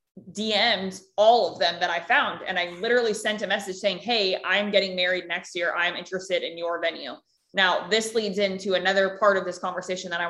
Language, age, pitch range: English, 20-39, 180-210 Hz